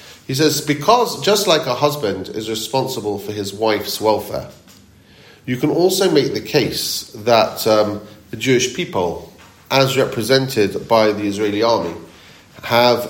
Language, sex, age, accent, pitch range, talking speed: English, male, 40-59, British, 100-130 Hz, 140 wpm